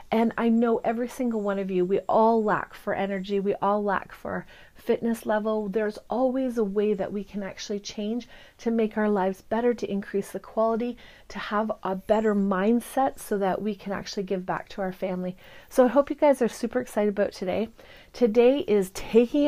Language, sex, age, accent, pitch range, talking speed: English, female, 30-49, American, 205-235 Hz, 200 wpm